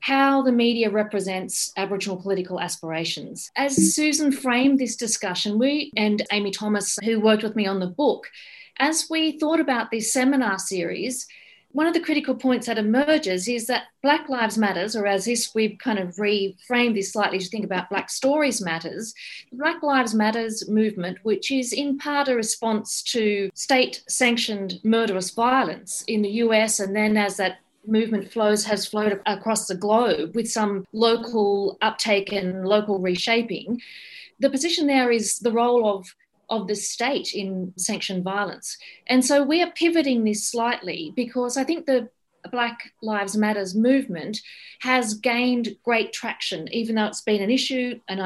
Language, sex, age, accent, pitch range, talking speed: English, female, 40-59, Australian, 195-250 Hz, 165 wpm